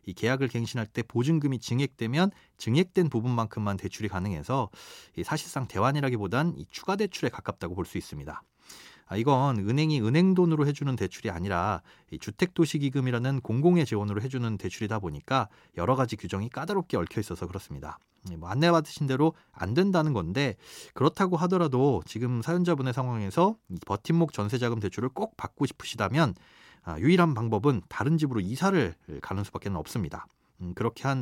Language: Korean